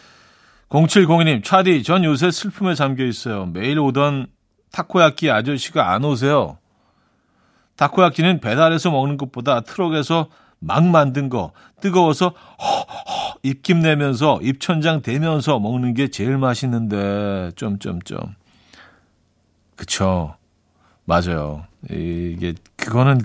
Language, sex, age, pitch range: Korean, male, 40-59, 100-155 Hz